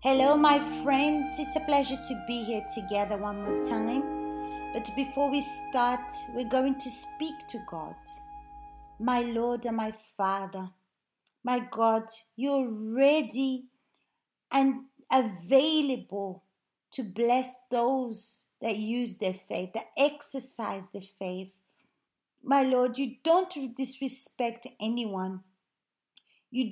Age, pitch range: 30-49, 220-280 Hz